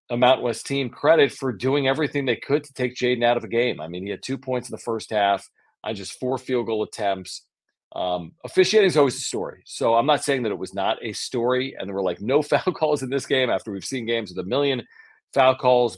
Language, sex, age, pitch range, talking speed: English, male, 40-59, 110-135 Hz, 255 wpm